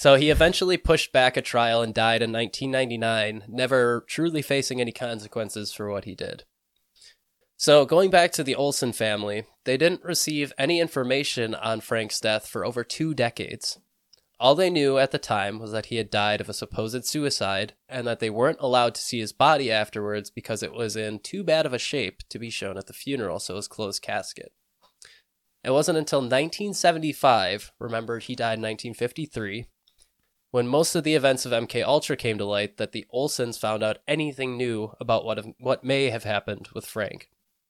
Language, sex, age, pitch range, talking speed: English, male, 20-39, 110-140 Hz, 190 wpm